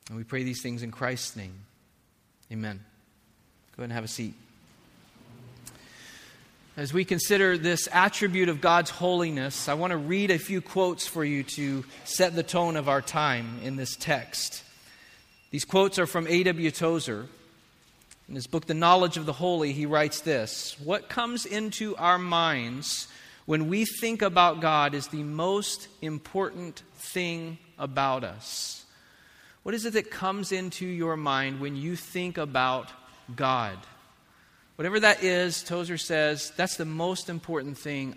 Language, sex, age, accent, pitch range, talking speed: English, male, 40-59, American, 135-180 Hz, 155 wpm